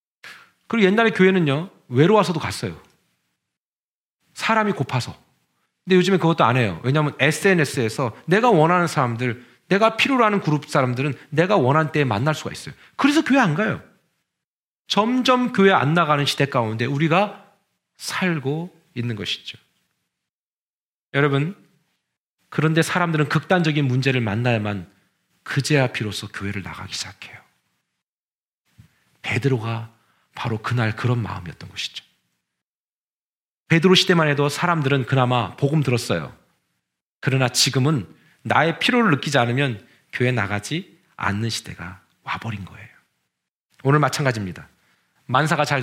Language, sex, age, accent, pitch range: Korean, male, 40-59, native, 115-160 Hz